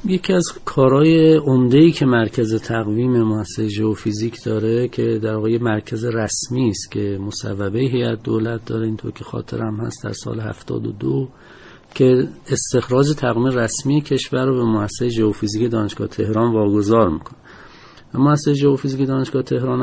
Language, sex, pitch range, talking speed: Persian, male, 105-130 Hz, 140 wpm